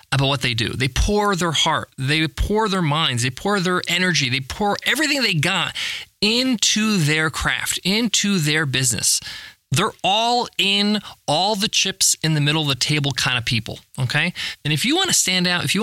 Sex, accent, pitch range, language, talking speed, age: male, American, 130-180 Hz, English, 195 wpm, 20-39